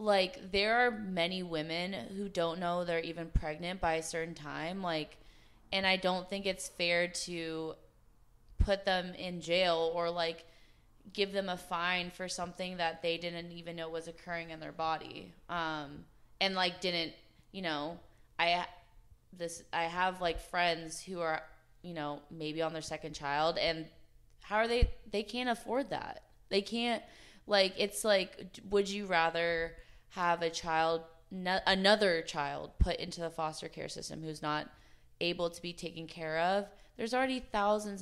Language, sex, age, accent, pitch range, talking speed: English, female, 20-39, American, 160-185 Hz, 165 wpm